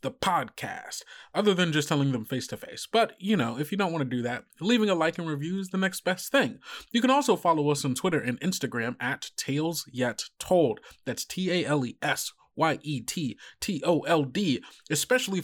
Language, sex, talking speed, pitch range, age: English, male, 170 wpm, 130-170 Hz, 20-39